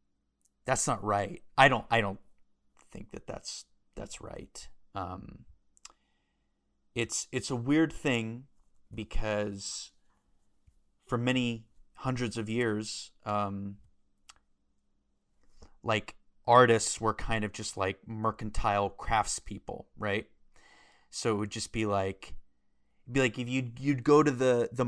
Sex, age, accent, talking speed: male, 30-49, American, 120 wpm